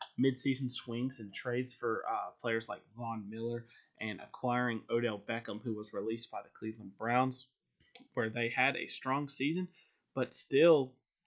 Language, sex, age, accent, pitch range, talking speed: English, male, 20-39, American, 115-130 Hz, 155 wpm